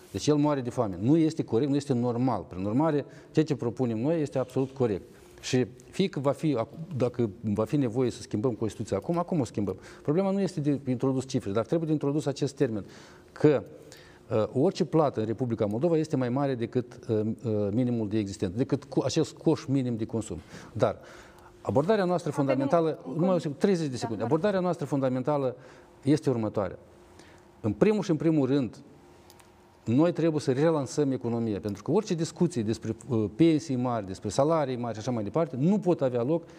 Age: 50-69